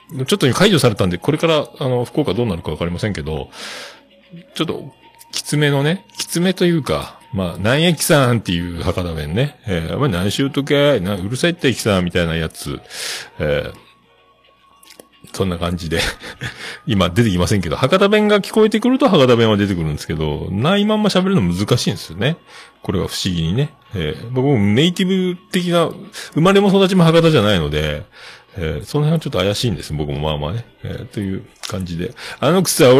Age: 40-59